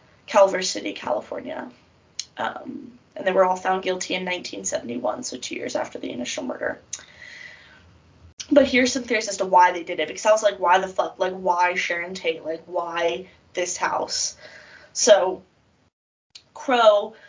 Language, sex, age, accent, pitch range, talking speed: English, female, 20-39, American, 180-230 Hz, 160 wpm